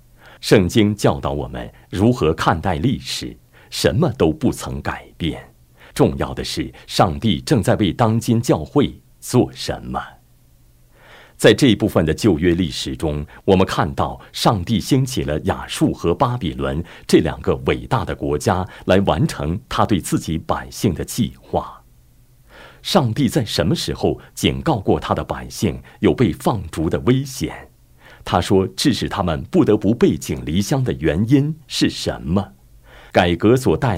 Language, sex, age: Chinese, male, 50-69